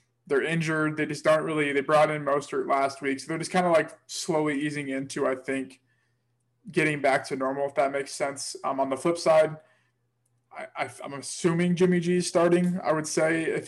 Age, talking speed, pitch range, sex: 20-39, 200 wpm, 135-155 Hz, male